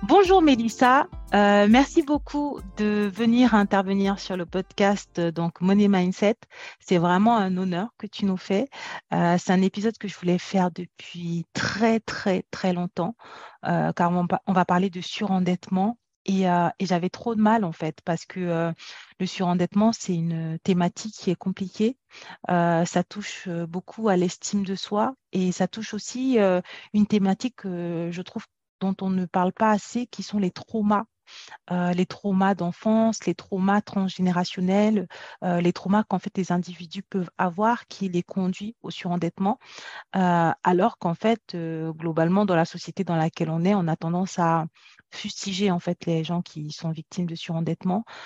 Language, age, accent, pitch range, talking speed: French, 30-49, French, 175-205 Hz, 175 wpm